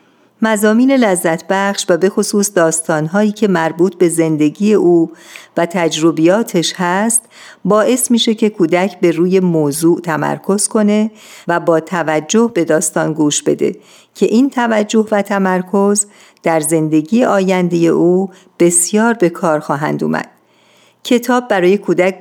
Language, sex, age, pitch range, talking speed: Persian, female, 50-69, 165-210 Hz, 130 wpm